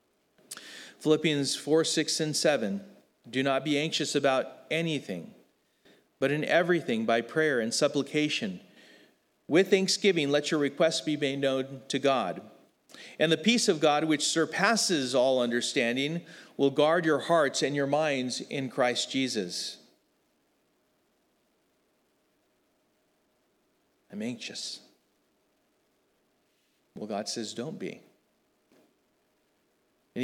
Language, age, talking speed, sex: English, 40-59, 110 wpm, male